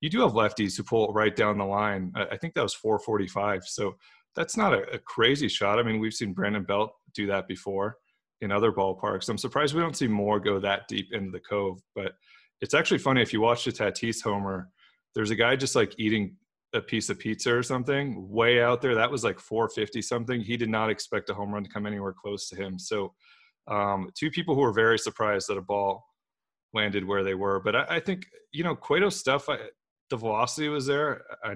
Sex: male